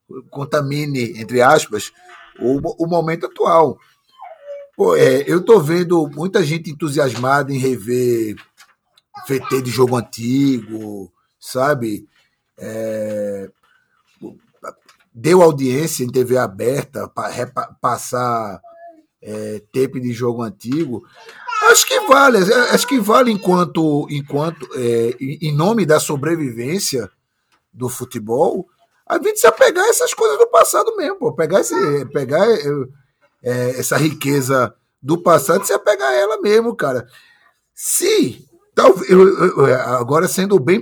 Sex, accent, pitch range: male, Brazilian, 125-205 Hz